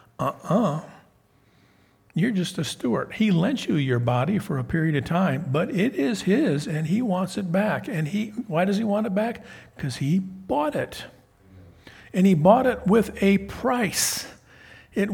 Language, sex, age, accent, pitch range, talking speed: English, male, 50-69, American, 140-190 Hz, 175 wpm